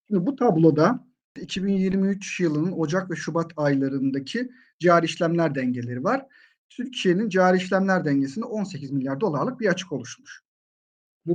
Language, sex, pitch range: Turkish, male, 150-195 Hz